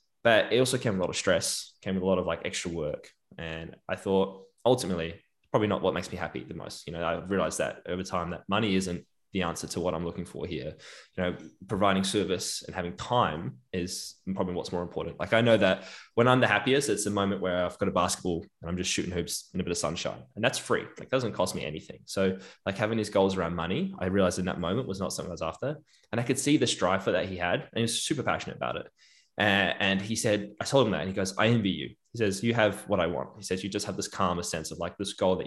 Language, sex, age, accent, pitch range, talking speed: English, male, 10-29, Australian, 90-105 Hz, 275 wpm